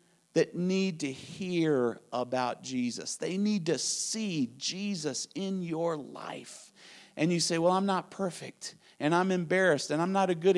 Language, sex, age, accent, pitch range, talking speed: English, male, 40-59, American, 155-205 Hz, 165 wpm